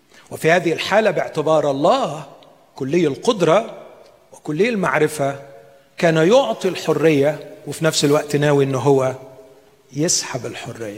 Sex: male